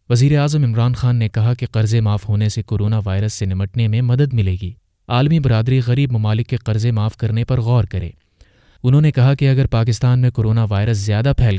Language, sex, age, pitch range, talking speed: Urdu, male, 30-49, 105-125 Hz, 210 wpm